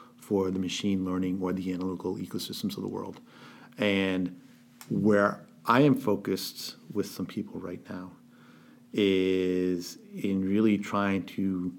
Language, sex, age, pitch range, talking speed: English, male, 50-69, 90-100 Hz, 130 wpm